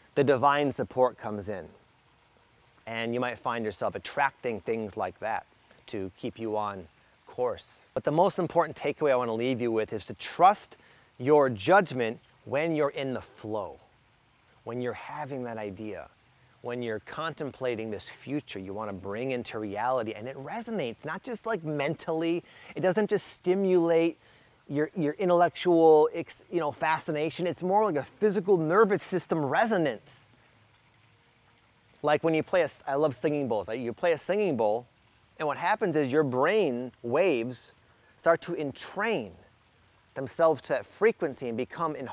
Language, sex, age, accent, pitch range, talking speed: English, male, 30-49, American, 115-165 Hz, 160 wpm